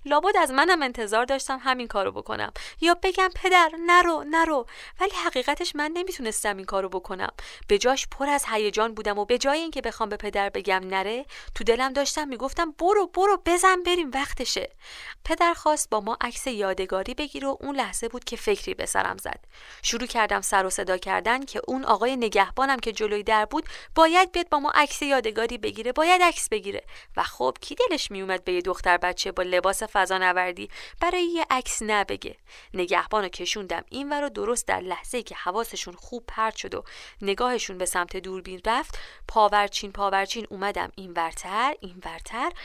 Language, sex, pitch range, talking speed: Persian, female, 195-295 Hz, 180 wpm